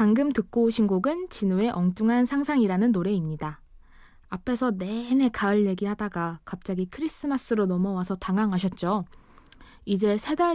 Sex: female